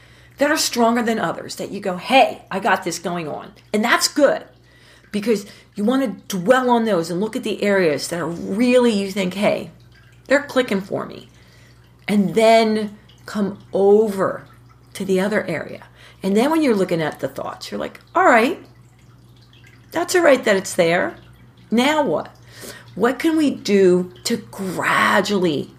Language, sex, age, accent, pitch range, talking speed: English, female, 40-59, American, 165-225 Hz, 170 wpm